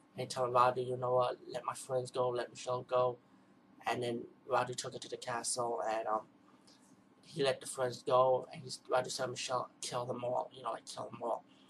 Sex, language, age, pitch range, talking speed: male, English, 30-49, 125-150 Hz, 220 wpm